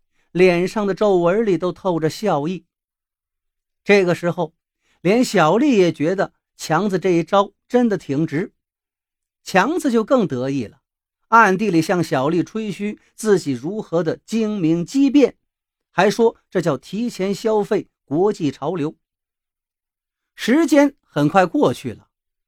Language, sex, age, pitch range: Chinese, male, 50-69, 145-220 Hz